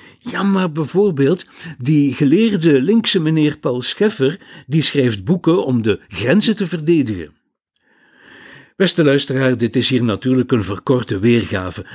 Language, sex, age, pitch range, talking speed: Dutch, male, 60-79, 115-170 Hz, 130 wpm